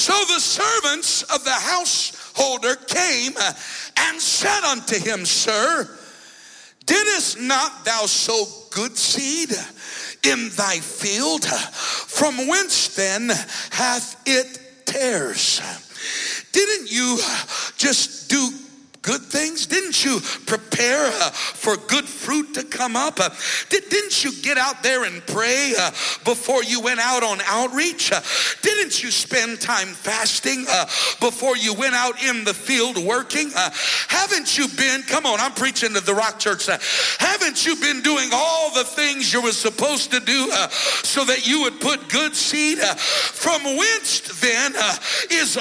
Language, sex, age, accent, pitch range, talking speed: English, male, 60-79, American, 240-310 Hz, 150 wpm